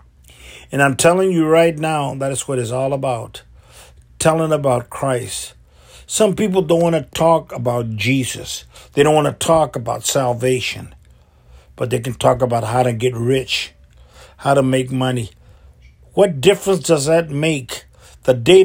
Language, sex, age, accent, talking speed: English, male, 50-69, American, 160 wpm